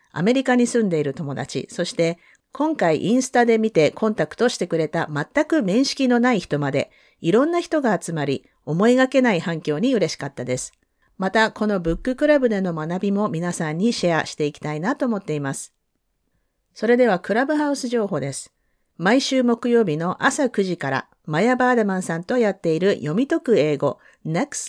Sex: female